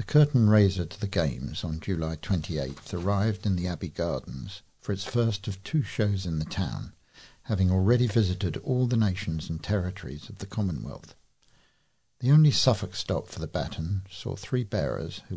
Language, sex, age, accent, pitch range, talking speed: English, male, 50-69, British, 85-110 Hz, 175 wpm